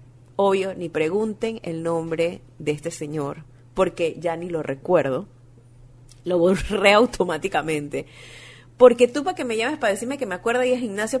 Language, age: Spanish, 30-49